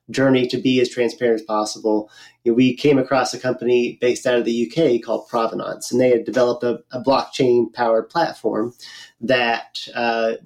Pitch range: 120-140 Hz